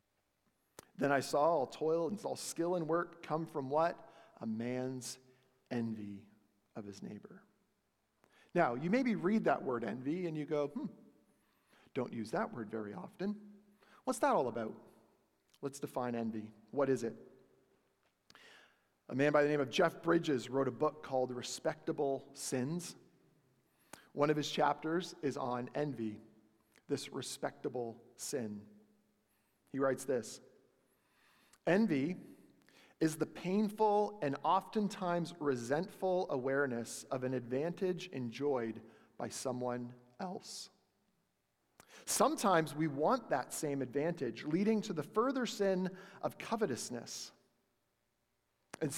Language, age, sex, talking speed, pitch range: English, 40-59, male, 125 wpm, 130-180 Hz